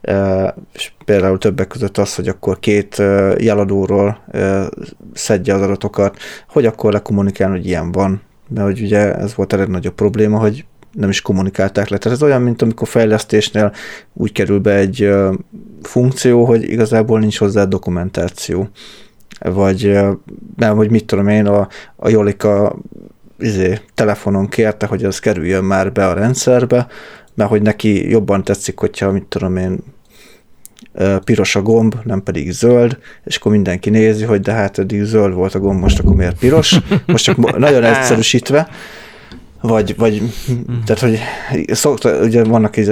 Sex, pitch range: male, 100-115 Hz